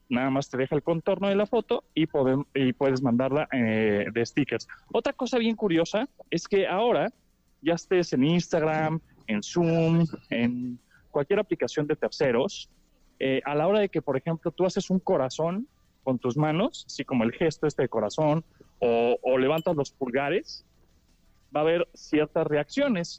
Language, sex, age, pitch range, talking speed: Spanish, male, 30-49, 125-165 Hz, 175 wpm